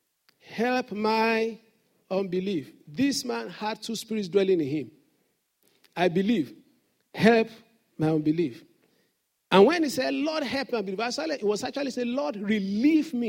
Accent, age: Nigerian, 50-69